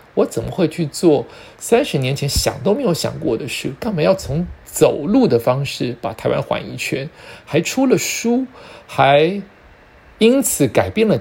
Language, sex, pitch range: Chinese, male, 115-160 Hz